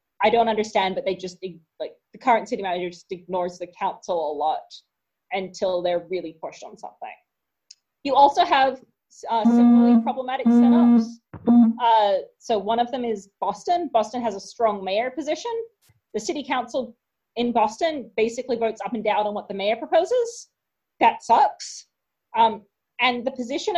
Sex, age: female, 30-49